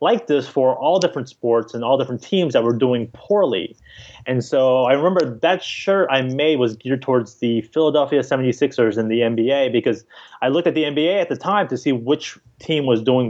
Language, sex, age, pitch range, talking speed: English, male, 30-49, 120-155 Hz, 210 wpm